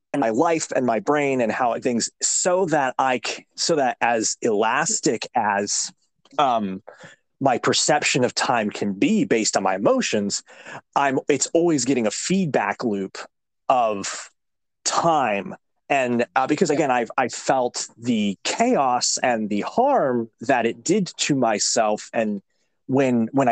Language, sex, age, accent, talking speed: English, male, 30-49, American, 150 wpm